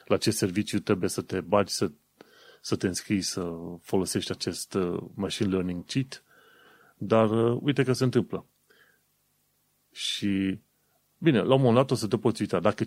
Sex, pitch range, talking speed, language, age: male, 95-120 Hz, 160 wpm, Romanian, 30-49